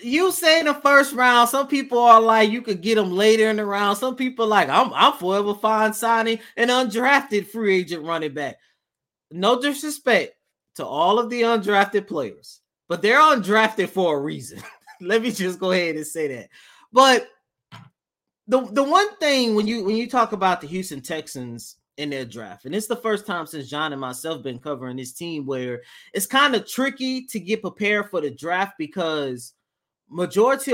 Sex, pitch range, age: male, 140-225 Hz, 30-49